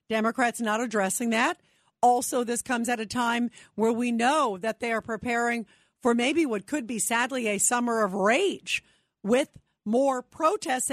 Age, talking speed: 50-69, 165 wpm